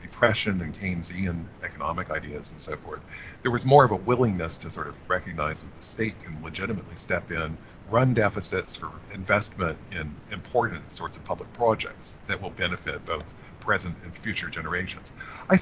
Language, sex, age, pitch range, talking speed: English, male, 50-69, 90-125 Hz, 165 wpm